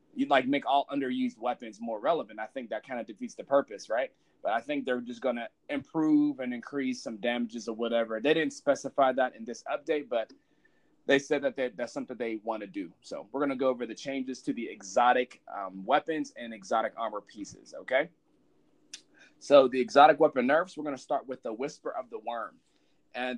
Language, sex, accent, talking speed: English, male, American, 210 wpm